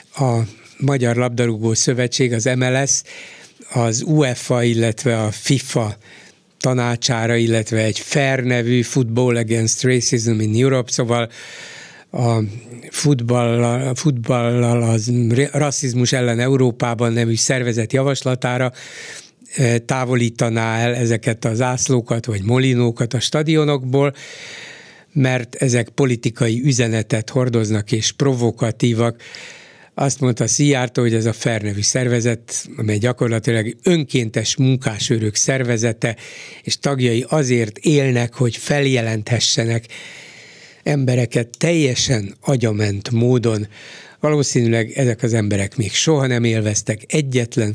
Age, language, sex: 60-79, Hungarian, male